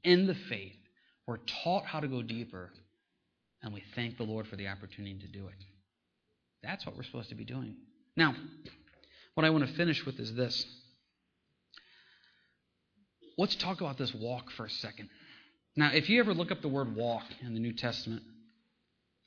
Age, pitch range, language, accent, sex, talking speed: 30-49, 110-140 Hz, English, American, male, 180 wpm